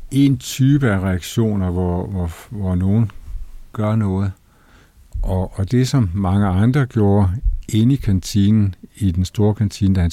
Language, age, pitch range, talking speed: Danish, 60-79, 95-115 Hz, 155 wpm